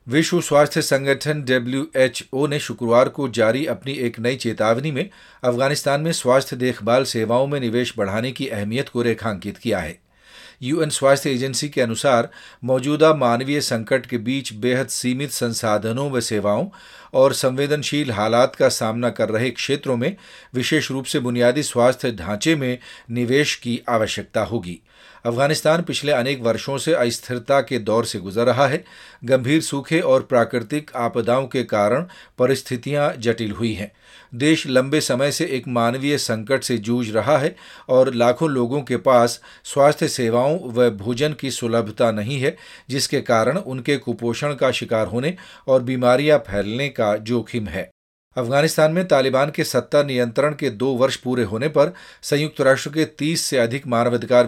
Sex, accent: male, native